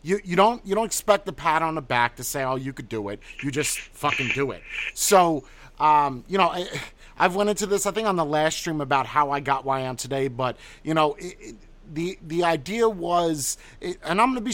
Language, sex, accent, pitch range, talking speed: English, male, American, 130-180 Hz, 250 wpm